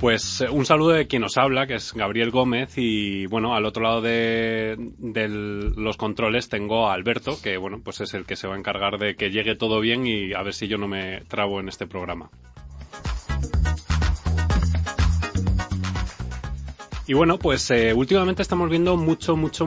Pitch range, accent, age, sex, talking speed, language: 100-120 Hz, Spanish, 30-49, male, 175 wpm, Spanish